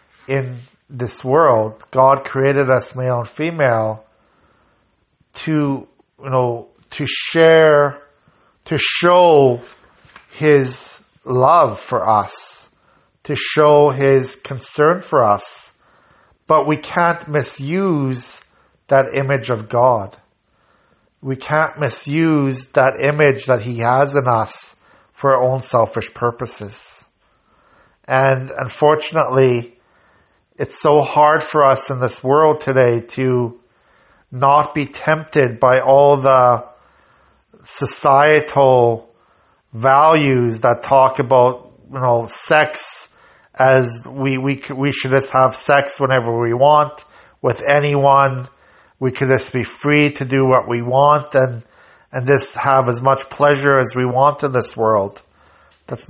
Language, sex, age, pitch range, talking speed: English, male, 50-69, 125-145 Hz, 120 wpm